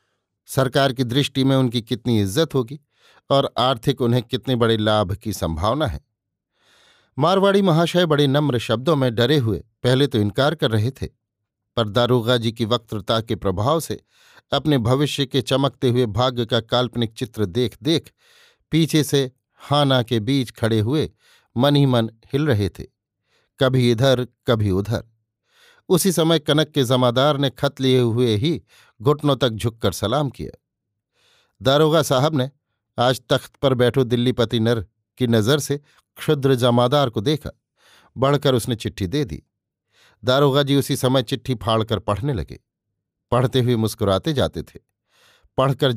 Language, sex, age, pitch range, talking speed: Hindi, male, 50-69, 115-140 Hz, 155 wpm